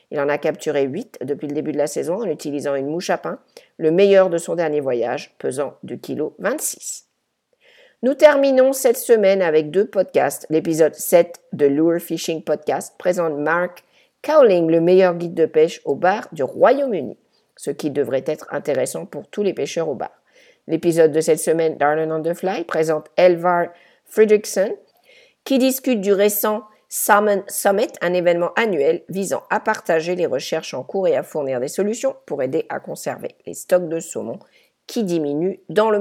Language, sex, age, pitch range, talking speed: English, female, 50-69, 155-210 Hz, 175 wpm